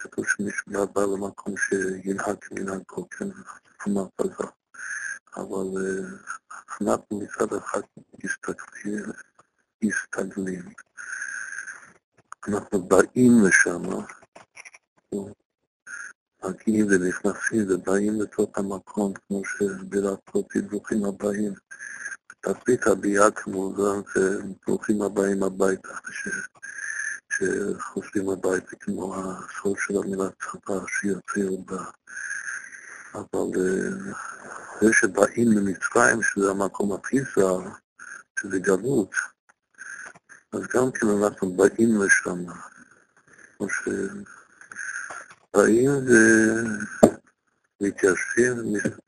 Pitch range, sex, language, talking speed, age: 95-110 Hz, male, Hebrew, 80 wpm, 50-69